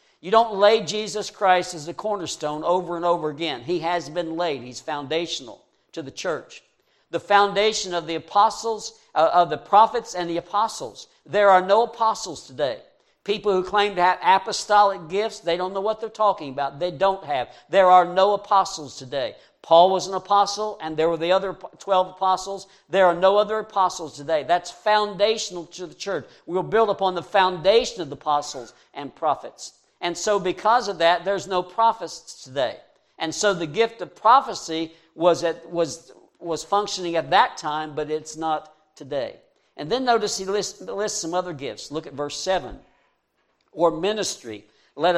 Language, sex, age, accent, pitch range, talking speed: English, male, 60-79, American, 165-205 Hz, 180 wpm